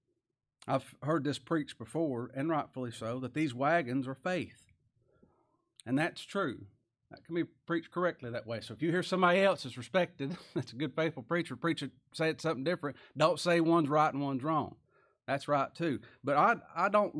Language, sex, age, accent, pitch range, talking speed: English, male, 40-59, American, 125-170 Hz, 190 wpm